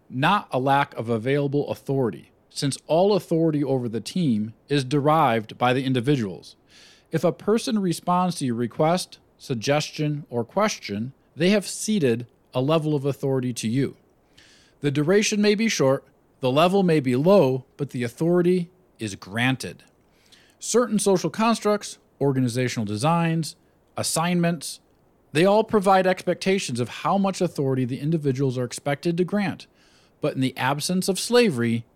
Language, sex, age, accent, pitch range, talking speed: English, male, 40-59, American, 120-170 Hz, 145 wpm